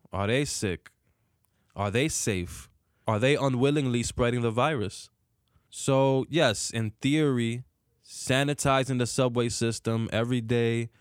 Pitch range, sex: 105-130 Hz, male